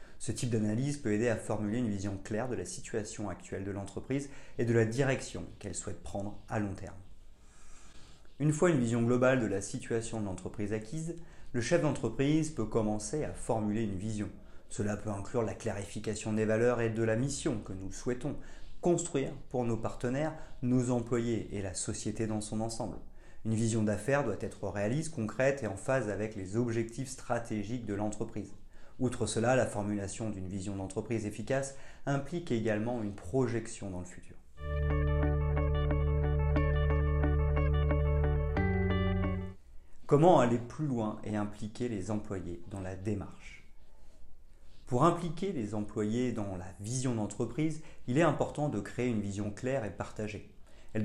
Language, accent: French, French